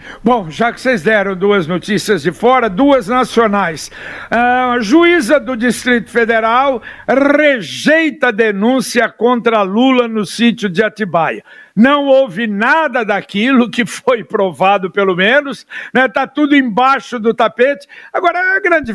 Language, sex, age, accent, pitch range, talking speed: Portuguese, male, 60-79, Brazilian, 215-275 Hz, 135 wpm